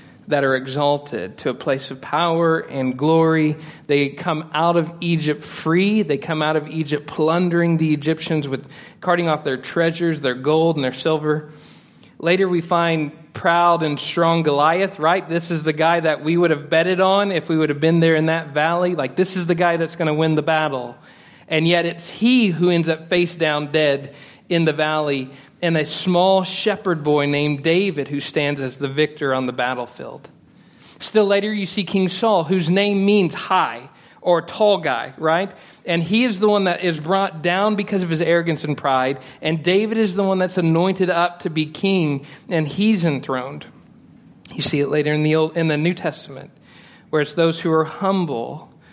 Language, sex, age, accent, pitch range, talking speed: English, male, 40-59, American, 150-180 Hz, 195 wpm